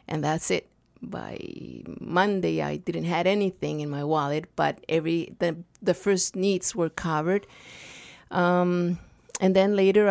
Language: English